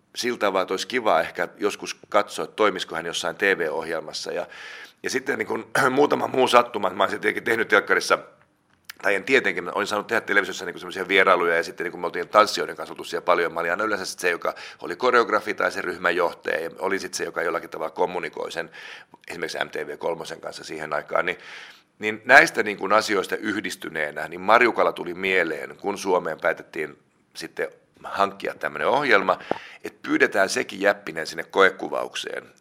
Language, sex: Finnish, male